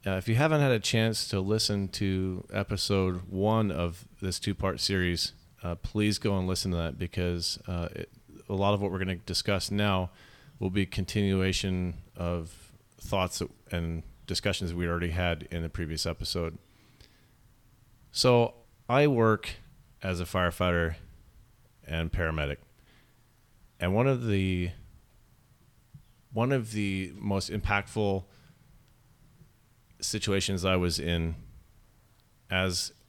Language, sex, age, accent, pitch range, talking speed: English, male, 30-49, American, 90-110 Hz, 130 wpm